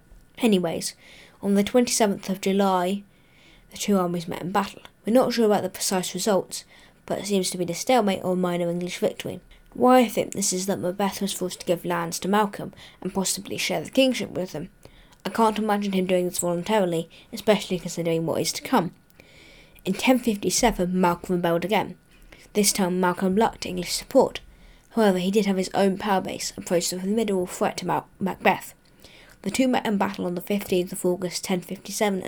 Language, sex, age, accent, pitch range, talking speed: English, female, 20-39, British, 180-205 Hz, 190 wpm